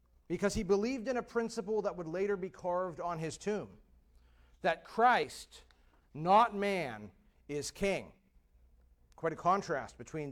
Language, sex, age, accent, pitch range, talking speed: English, male, 40-59, American, 140-205 Hz, 140 wpm